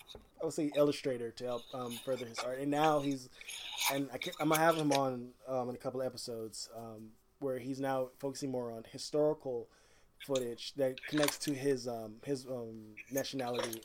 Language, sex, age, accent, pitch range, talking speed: English, male, 20-39, American, 120-145 Hz, 185 wpm